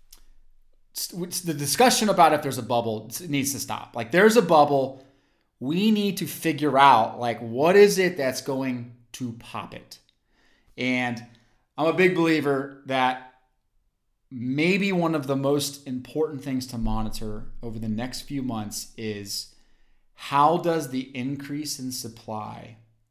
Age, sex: 30-49, male